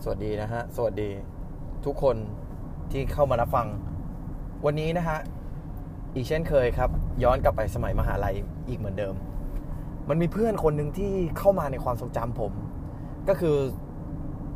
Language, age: Thai, 20-39